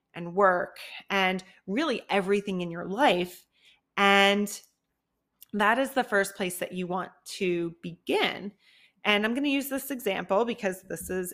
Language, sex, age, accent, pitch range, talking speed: English, female, 30-49, American, 185-220 Hz, 150 wpm